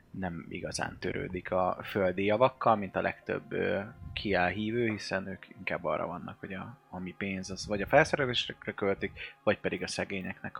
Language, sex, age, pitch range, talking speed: Hungarian, male, 20-39, 90-105 Hz, 170 wpm